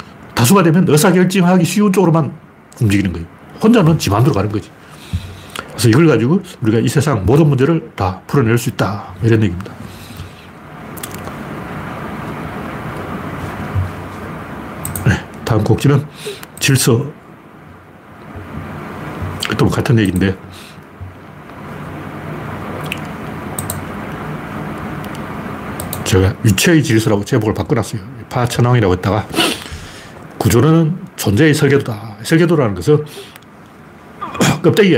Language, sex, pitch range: Korean, male, 105-155 Hz